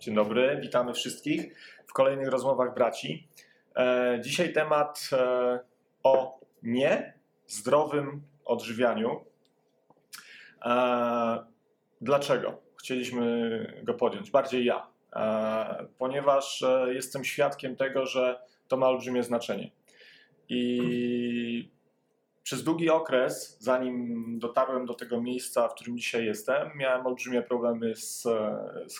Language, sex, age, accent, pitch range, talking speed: Polish, male, 30-49, native, 120-135 Hz, 95 wpm